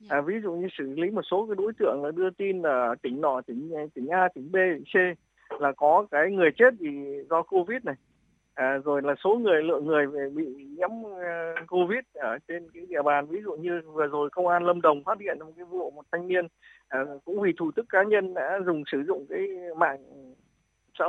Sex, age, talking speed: male, 20-39, 220 wpm